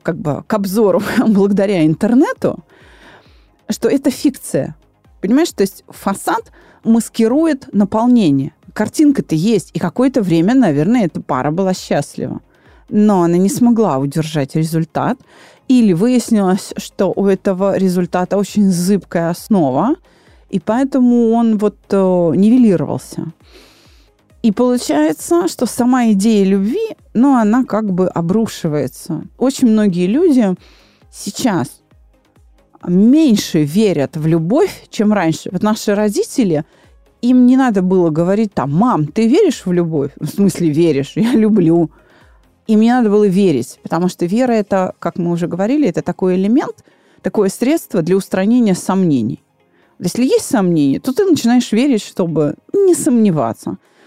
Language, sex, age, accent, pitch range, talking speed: Russian, female, 30-49, native, 180-245 Hz, 130 wpm